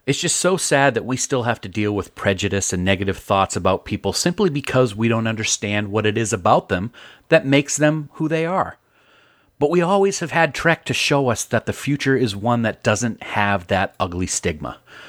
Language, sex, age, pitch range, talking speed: English, male, 40-59, 110-150 Hz, 210 wpm